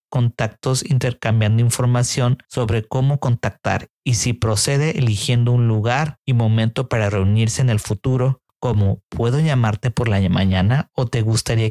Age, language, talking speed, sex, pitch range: 40-59, Spanish, 145 wpm, male, 110-130 Hz